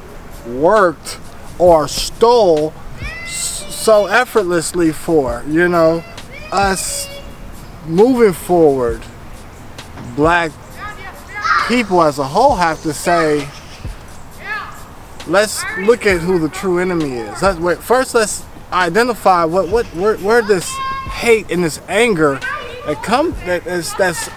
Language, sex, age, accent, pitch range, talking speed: English, male, 20-39, American, 160-205 Hz, 115 wpm